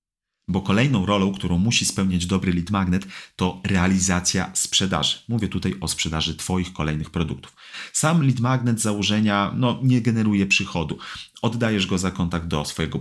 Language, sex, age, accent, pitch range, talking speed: Polish, male, 30-49, native, 85-110 Hz, 150 wpm